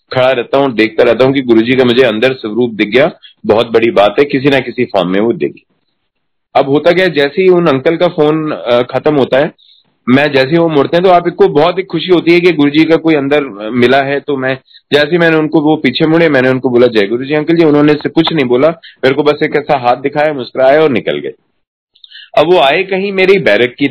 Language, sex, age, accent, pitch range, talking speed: Hindi, male, 30-49, native, 120-150 Hz, 245 wpm